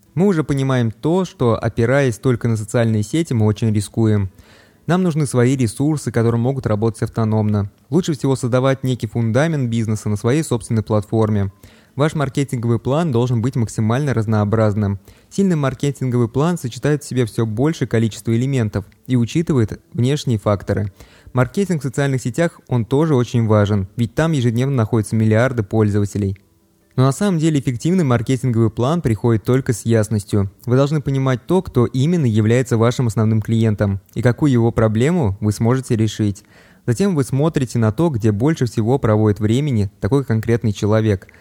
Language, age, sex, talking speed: Russian, 20-39, male, 155 wpm